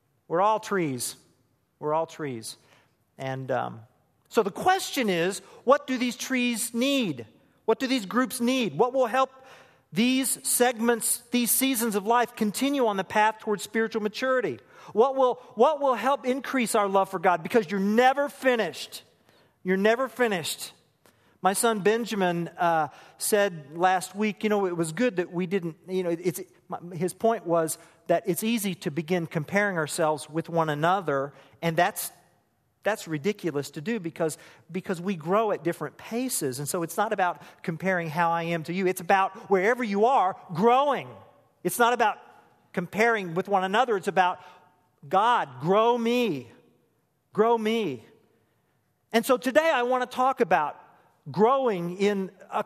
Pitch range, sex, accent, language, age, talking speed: 170-235 Hz, male, American, English, 40-59, 160 wpm